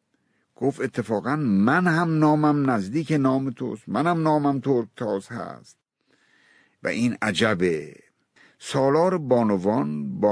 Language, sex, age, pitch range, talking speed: Persian, male, 60-79, 120-155 Hz, 110 wpm